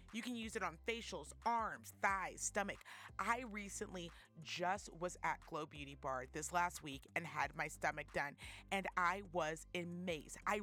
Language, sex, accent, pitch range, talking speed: English, female, American, 155-205 Hz, 170 wpm